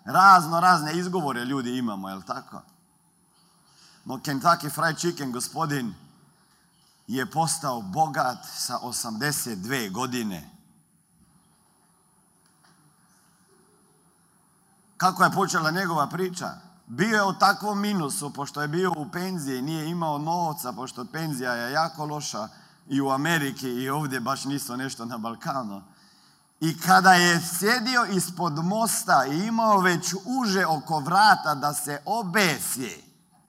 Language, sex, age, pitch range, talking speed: Croatian, male, 50-69, 150-195 Hz, 120 wpm